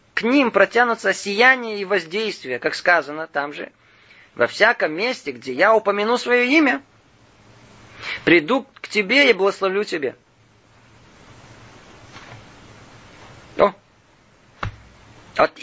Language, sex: Russian, male